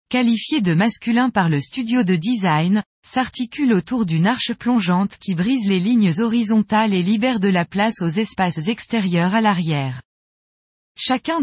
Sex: female